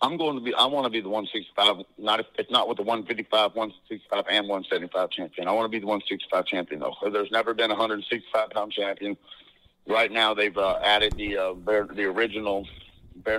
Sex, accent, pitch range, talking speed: male, American, 95-110 Hz, 210 wpm